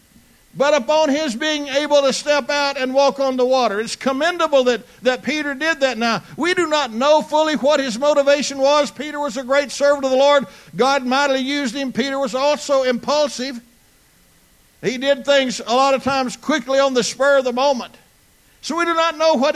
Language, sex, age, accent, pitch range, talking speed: English, male, 60-79, American, 235-280 Hz, 205 wpm